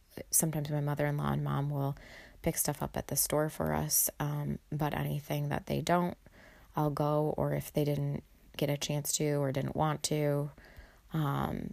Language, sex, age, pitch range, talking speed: English, female, 30-49, 135-165 Hz, 180 wpm